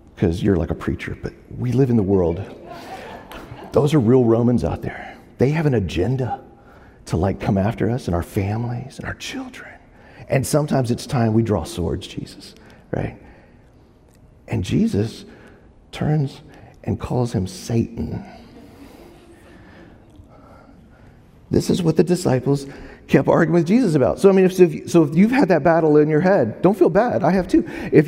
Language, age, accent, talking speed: English, 40-59, American, 170 wpm